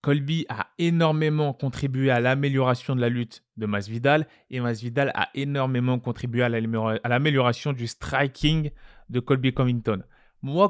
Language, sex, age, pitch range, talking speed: French, male, 20-39, 130-165 Hz, 135 wpm